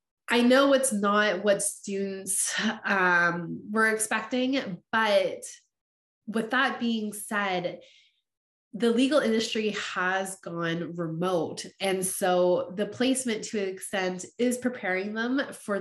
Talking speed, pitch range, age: 120 wpm, 175-220 Hz, 20-39